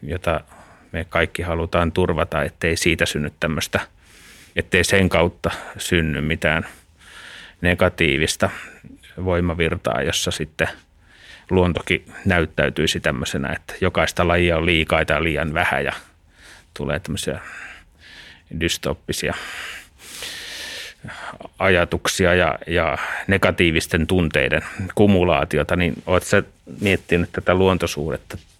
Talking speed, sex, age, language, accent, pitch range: 90 wpm, male, 30-49, Finnish, native, 80-90 Hz